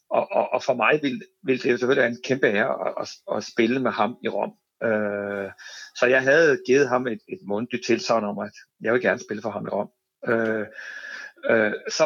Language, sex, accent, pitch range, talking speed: Danish, male, native, 115-155 Hz, 230 wpm